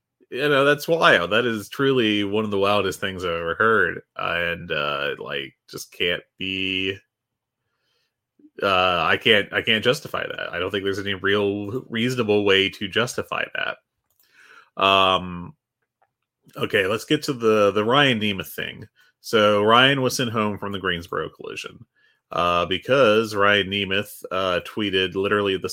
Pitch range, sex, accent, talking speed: 95-125 Hz, male, American, 155 wpm